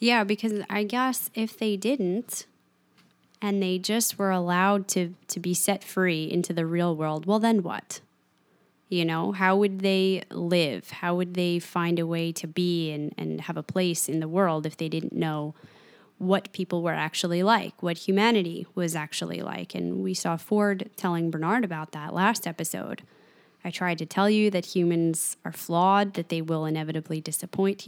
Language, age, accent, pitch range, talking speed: English, 20-39, American, 170-200 Hz, 180 wpm